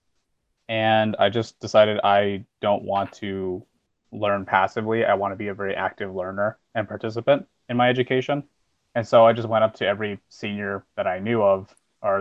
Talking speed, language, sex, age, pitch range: 180 wpm, English, male, 20-39, 100-115 Hz